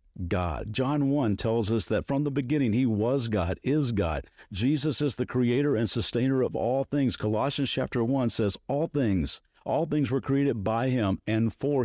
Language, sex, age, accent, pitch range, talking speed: English, male, 50-69, American, 100-140 Hz, 185 wpm